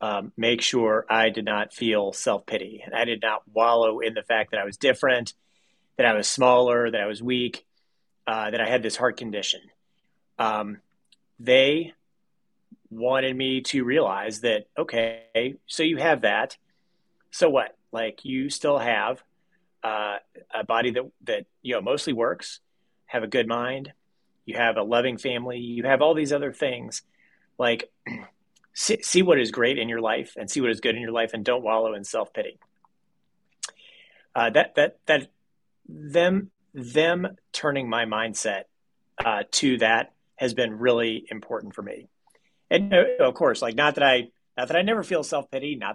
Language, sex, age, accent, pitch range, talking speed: English, male, 30-49, American, 115-155 Hz, 175 wpm